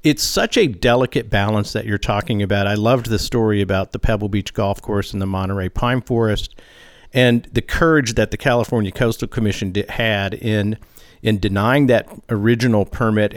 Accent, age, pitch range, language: American, 50-69, 100-120 Hz, English